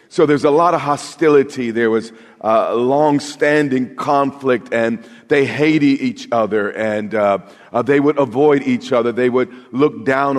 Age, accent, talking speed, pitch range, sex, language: 40-59, American, 160 wpm, 115-145 Hz, male, English